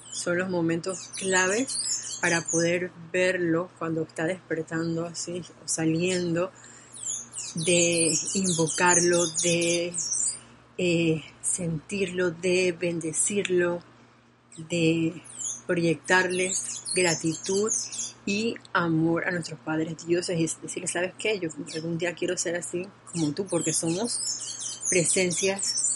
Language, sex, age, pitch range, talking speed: Spanish, female, 30-49, 160-180 Hz, 100 wpm